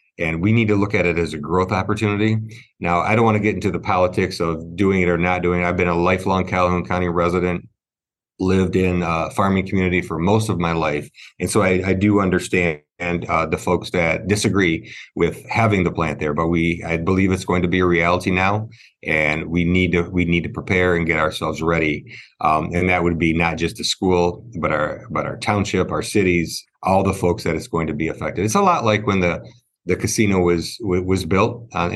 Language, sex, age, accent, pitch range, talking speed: English, male, 30-49, American, 85-100 Hz, 225 wpm